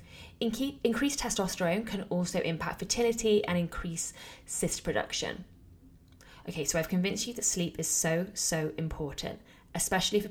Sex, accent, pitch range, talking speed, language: female, British, 155-200 Hz, 135 wpm, English